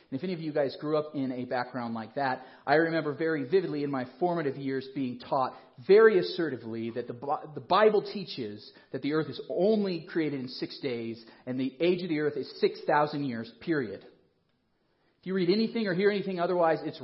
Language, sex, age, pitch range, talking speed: English, male, 40-59, 135-180 Hz, 210 wpm